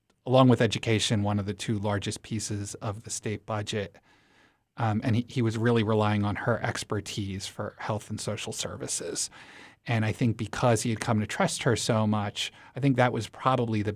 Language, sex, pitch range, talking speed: English, male, 105-120 Hz, 200 wpm